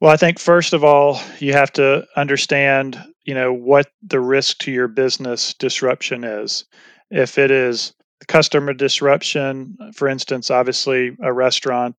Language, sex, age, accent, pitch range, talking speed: English, male, 30-49, American, 125-140 Hz, 150 wpm